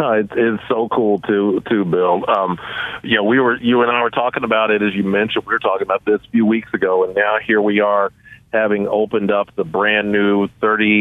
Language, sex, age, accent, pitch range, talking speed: English, male, 40-59, American, 100-110 Hz, 235 wpm